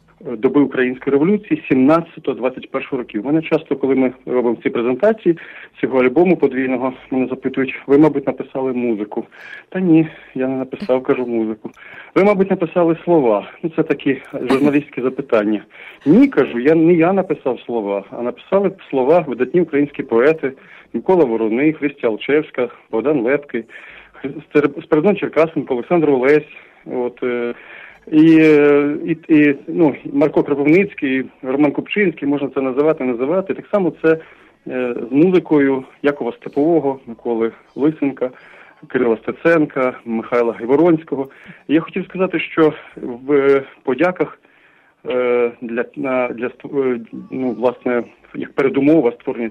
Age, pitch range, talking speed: 40-59, 125-155 Hz, 120 wpm